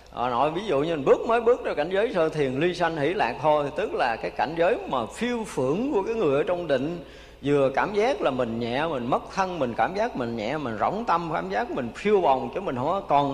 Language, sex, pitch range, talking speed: Vietnamese, male, 125-205 Hz, 260 wpm